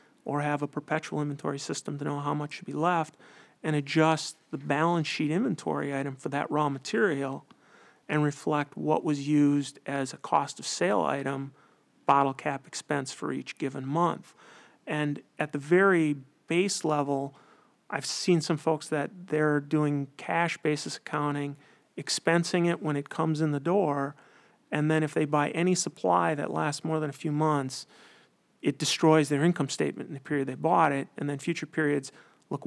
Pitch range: 145-160 Hz